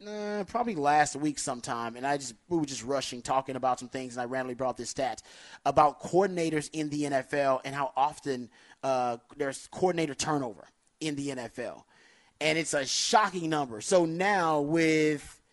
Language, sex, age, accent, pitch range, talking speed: English, male, 30-49, American, 135-170 Hz, 175 wpm